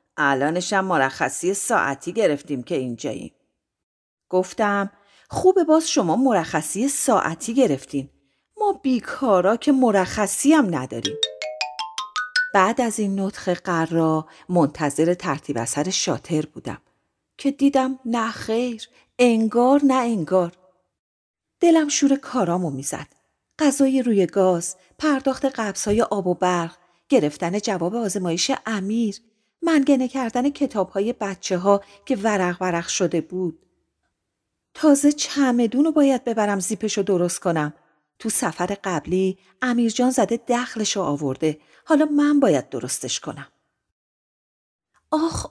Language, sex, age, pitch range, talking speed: Persian, female, 40-59, 175-260 Hz, 110 wpm